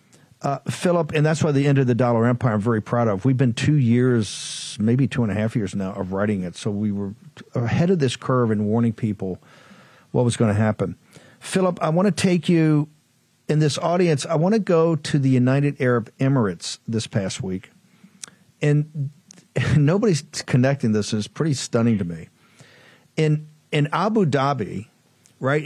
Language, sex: English, male